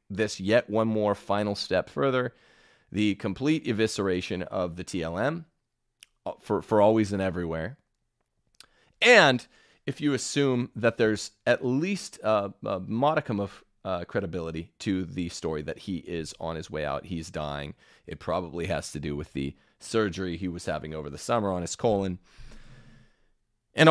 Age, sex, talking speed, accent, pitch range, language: 30-49, male, 155 wpm, American, 90-130 Hz, English